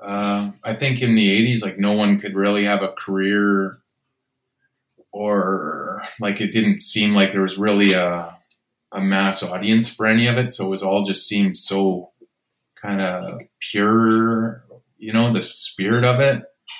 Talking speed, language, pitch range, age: 170 wpm, English, 95-110 Hz, 20-39